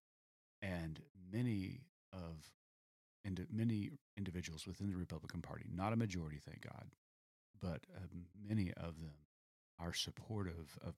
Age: 40-59